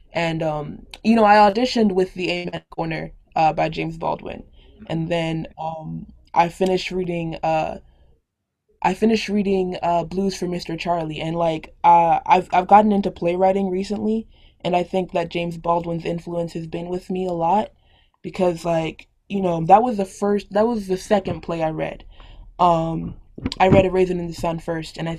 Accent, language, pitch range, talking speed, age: American, English, 165-190 Hz, 185 wpm, 20-39